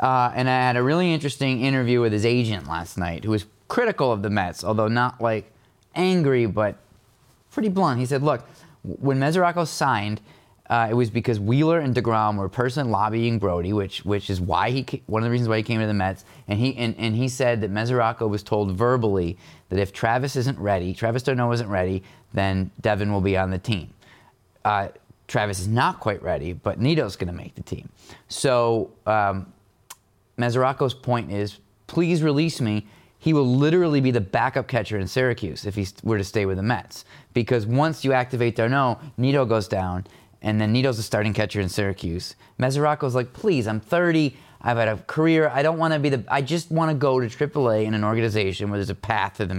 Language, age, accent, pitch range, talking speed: English, 30-49, American, 105-135 Hz, 205 wpm